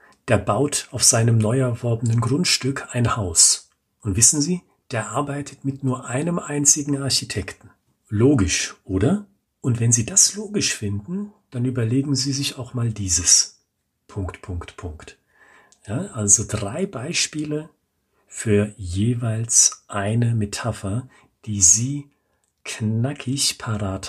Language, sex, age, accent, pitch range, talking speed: German, male, 40-59, German, 100-130 Hz, 120 wpm